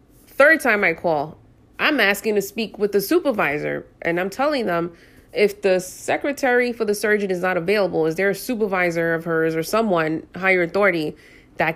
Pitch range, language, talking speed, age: 170-210 Hz, English, 180 wpm, 20-39